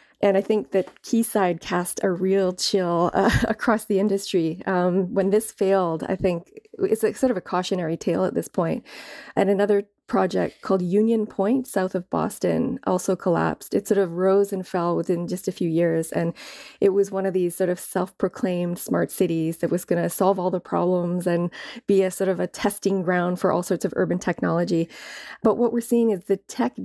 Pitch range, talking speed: 175-205 Hz, 200 wpm